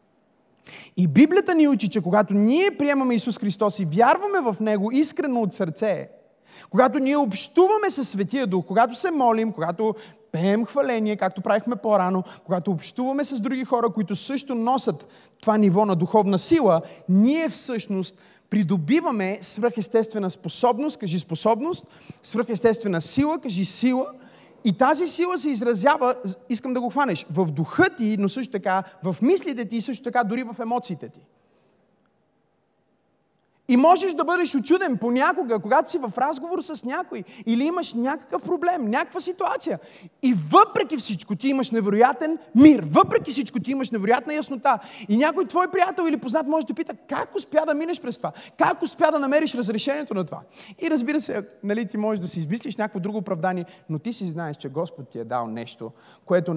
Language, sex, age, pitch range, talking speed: Bulgarian, male, 30-49, 190-285 Hz, 165 wpm